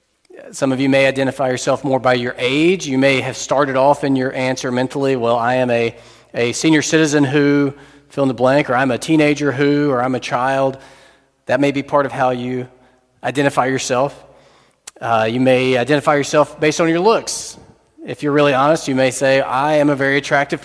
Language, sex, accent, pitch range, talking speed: English, male, American, 125-145 Hz, 205 wpm